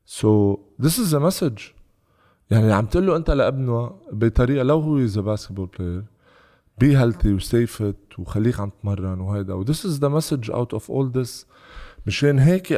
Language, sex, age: Arabic, male, 20-39